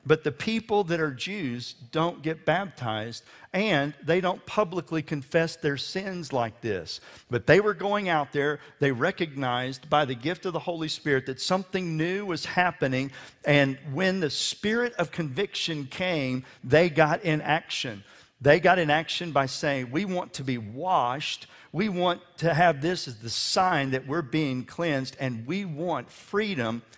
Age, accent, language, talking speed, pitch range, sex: 50-69, American, English, 170 wpm, 130-175 Hz, male